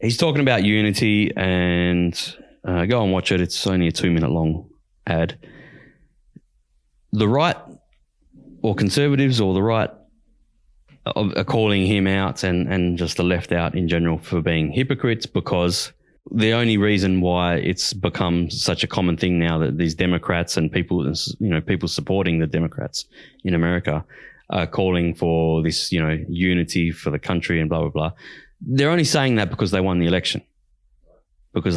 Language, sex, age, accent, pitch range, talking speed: English, male, 20-39, Australian, 85-105 Hz, 160 wpm